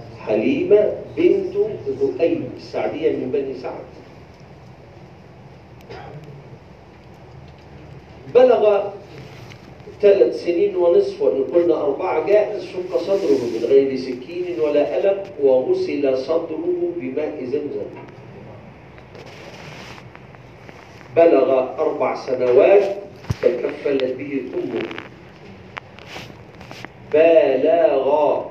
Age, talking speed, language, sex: 50-69, 70 wpm, Arabic, male